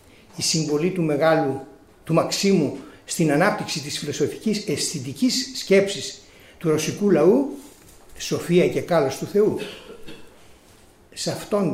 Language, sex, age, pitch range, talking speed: Greek, male, 60-79, 150-200 Hz, 110 wpm